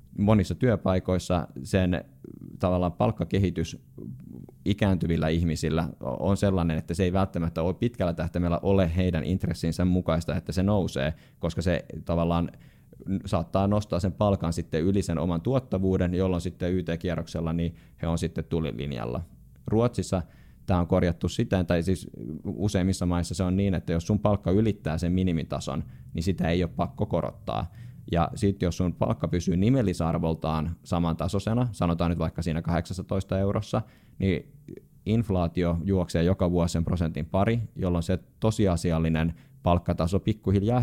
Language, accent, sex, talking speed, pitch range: Finnish, native, male, 140 wpm, 85-95 Hz